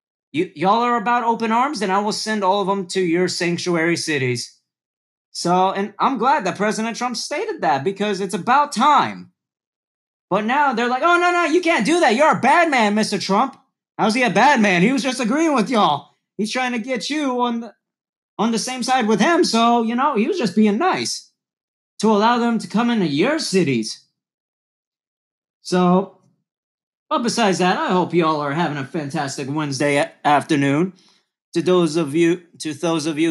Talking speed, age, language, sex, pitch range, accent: 195 wpm, 30-49, English, male, 170-225 Hz, American